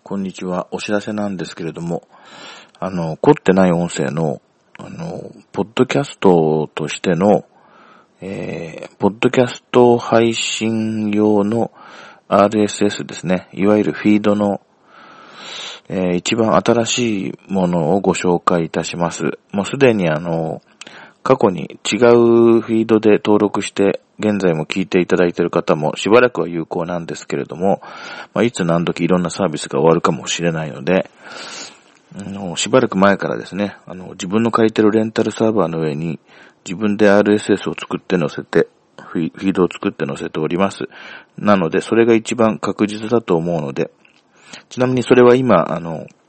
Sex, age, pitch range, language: male, 40-59, 85-110 Hz, Japanese